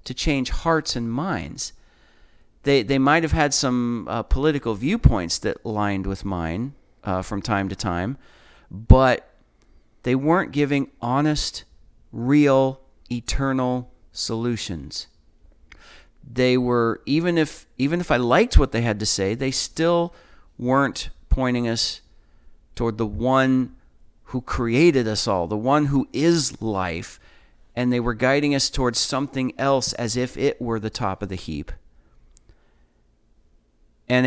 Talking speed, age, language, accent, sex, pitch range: 140 wpm, 50-69, English, American, male, 100-135 Hz